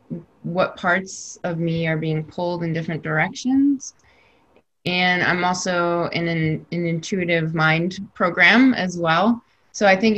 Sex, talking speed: female, 140 wpm